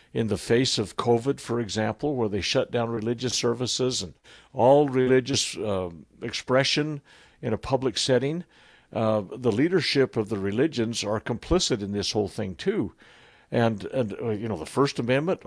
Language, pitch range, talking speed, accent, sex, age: English, 110-140 Hz, 165 wpm, American, male, 60-79